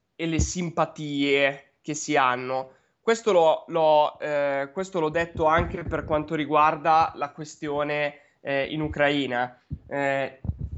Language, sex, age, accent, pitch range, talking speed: Italian, male, 20-39, native, 150-205 Hz, 130 wpm